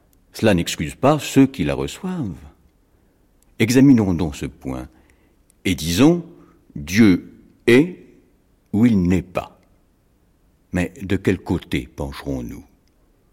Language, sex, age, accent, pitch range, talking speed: French, male, 60-79, French, 85-100 Hz, 110 wpm